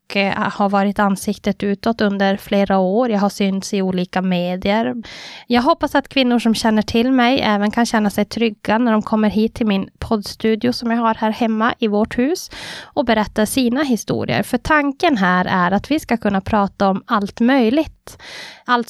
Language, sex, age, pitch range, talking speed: Swedish, female, 20-39, 210-245 Hz, 185 wpm